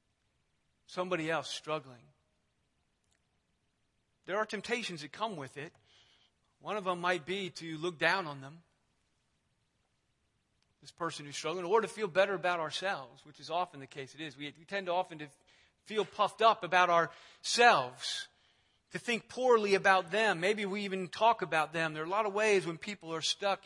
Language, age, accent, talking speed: English, 40-59, American, 170 wpm